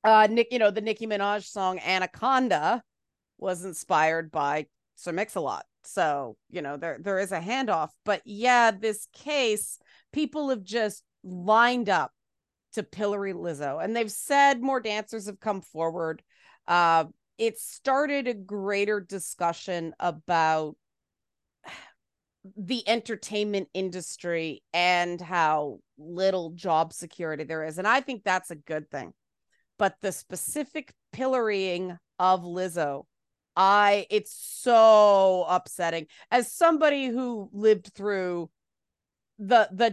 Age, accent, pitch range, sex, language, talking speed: 30-49, American, 175-220 Hz, female, English, 125 wpm